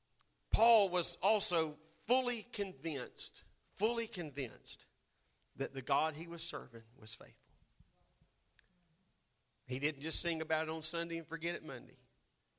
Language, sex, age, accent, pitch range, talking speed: English, male, 40-59, American, 155-210 Hz, 130 wpm